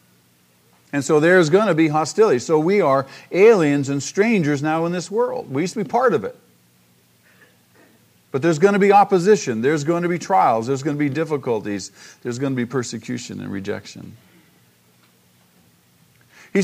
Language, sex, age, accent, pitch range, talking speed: English, male, 50-69, American, 115-180 Hz, 175 wpm